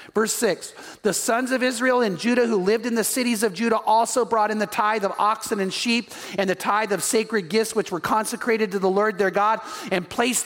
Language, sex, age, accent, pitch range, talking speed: English, male, 40-59, American, 210-270 Hz, 230 wpm